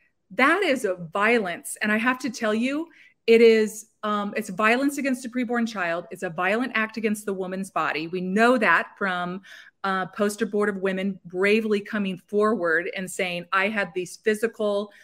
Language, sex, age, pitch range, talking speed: English, female, 30-49, 190-245 Hz, 175 wpm